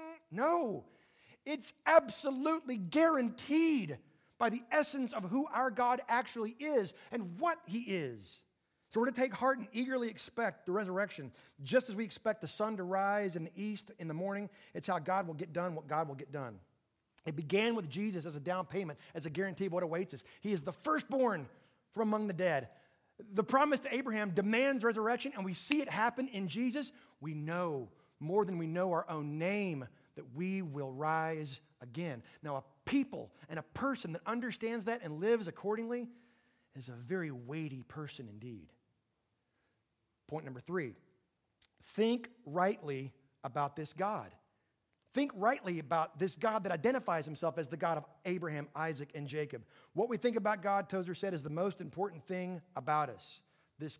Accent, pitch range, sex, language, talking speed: American, 155-230 Hz, male, English, 175 wpm